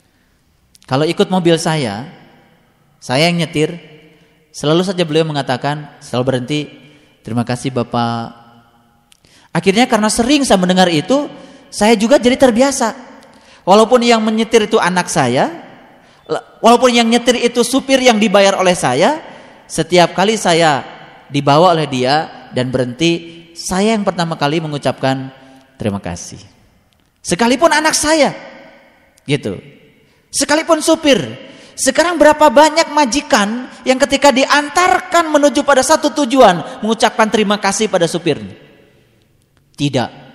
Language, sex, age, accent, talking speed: Indonesian, male, 30-49, native, 115 wpm